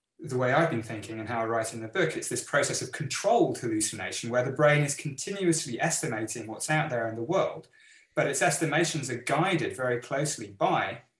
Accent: British